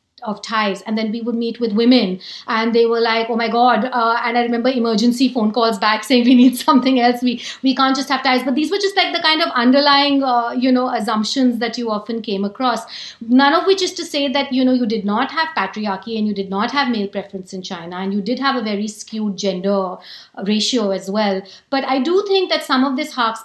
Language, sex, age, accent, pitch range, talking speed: English, female, 60-79, Indian, 215-255 Hz, 245 wpm